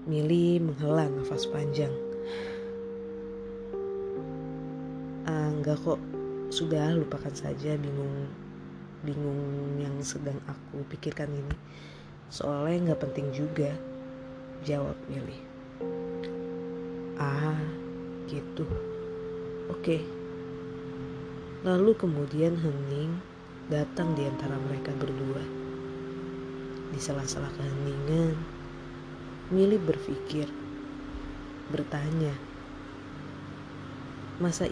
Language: Indonesian